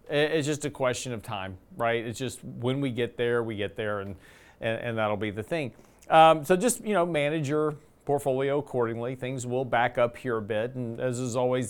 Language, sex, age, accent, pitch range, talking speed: English, male, 40-59, American, 120-155 Hz, 220 wpm